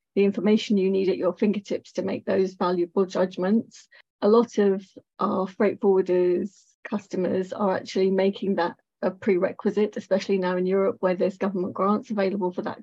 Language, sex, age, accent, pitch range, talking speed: English, female, 30-49, British, 185-210 Hz, 165 wpm